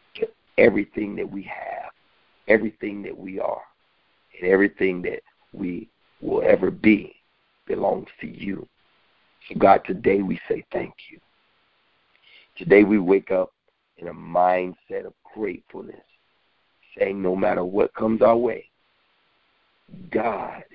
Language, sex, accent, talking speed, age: English, male, American, 120 wpm, 50-69